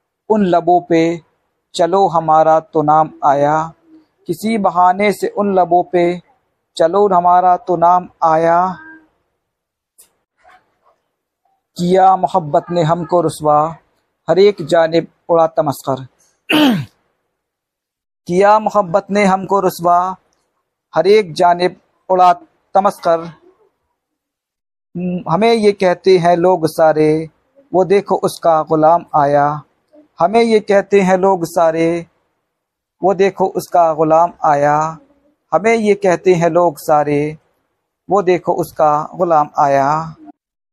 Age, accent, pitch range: 50-69, native, 160-195 Hz